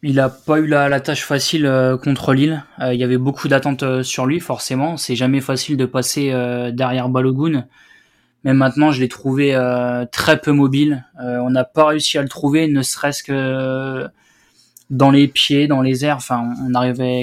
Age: 20-39